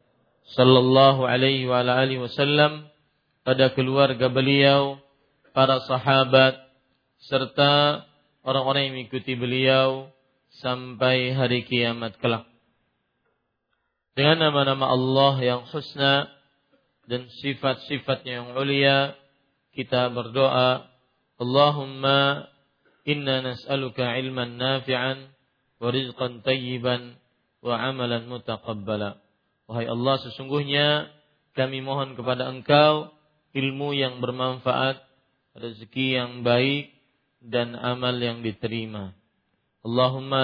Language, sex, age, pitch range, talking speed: Malay, male, 50-69, 125-135 Hz, 90 wpm